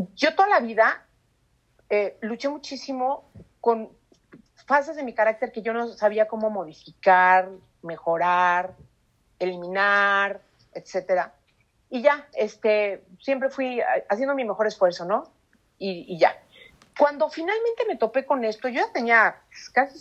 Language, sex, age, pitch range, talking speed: English, female, 40-59, 195-265 Hz, 130 wpm